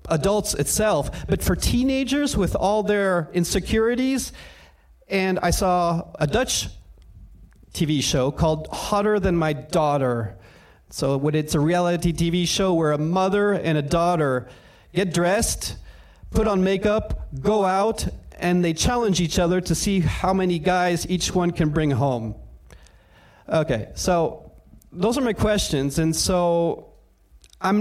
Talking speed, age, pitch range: 140 wpm, 30-49, 155-200 Hz